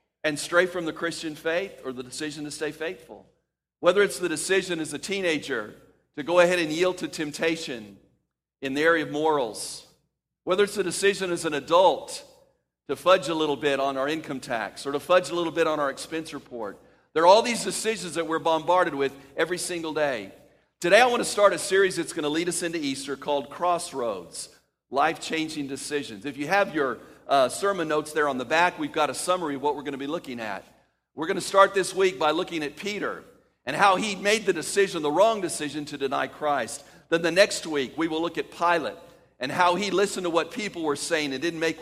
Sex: male